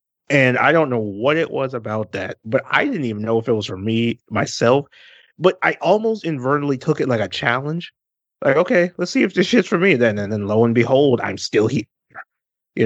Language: English